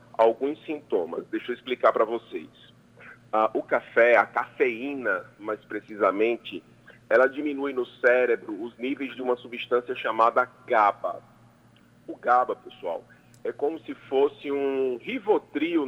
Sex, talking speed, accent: male, 130 wpm, Brazilian